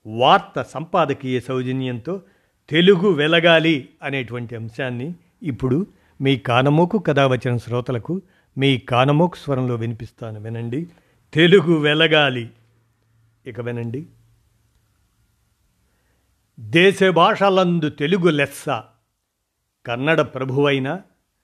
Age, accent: 50-69, native